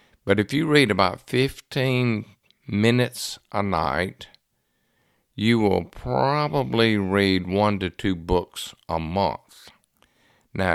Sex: male